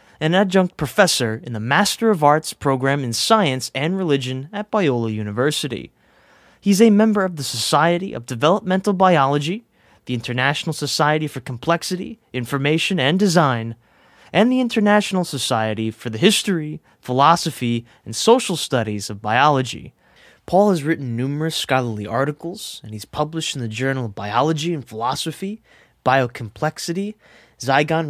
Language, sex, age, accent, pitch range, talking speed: English, male, 20-39, American, 120-175 Hz, 135 wpm